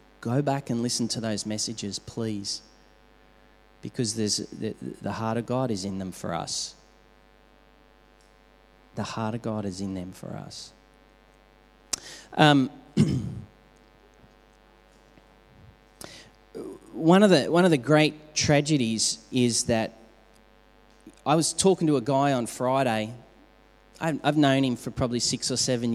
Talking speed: 130 wpm